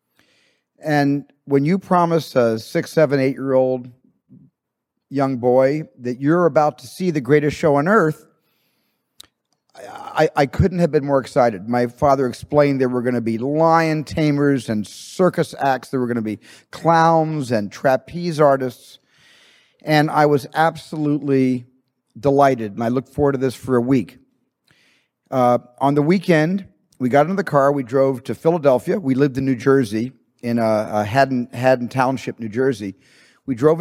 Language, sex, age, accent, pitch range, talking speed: English, male, 50-69, American, 125-155 Hz, 160 wpm